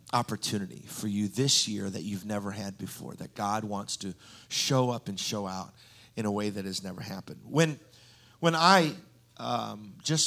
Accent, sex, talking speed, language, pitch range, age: American, male, 180 wpm, English, 105-125 Hz, 50-69